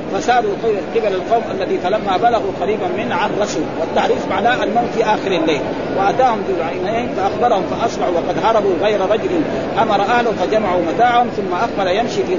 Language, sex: Arabic, male